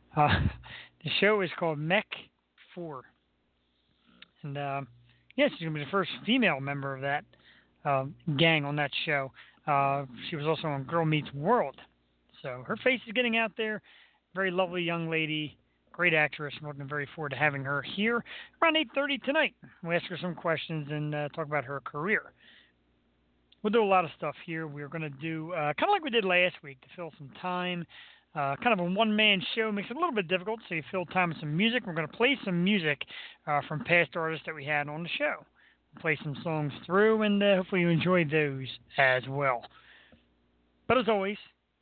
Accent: American